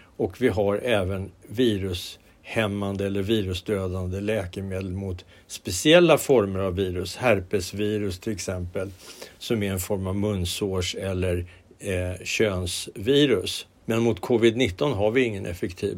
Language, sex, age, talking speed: Swedish, male, 60-79, 120 wpm